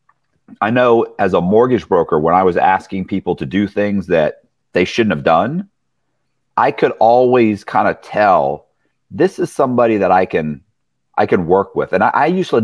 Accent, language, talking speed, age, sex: American, English, 185 wpm, 40-59, male